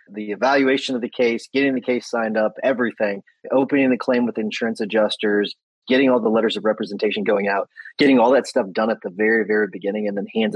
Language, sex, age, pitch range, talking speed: English, male, 30-49, 105-125 Hz, 215 wpm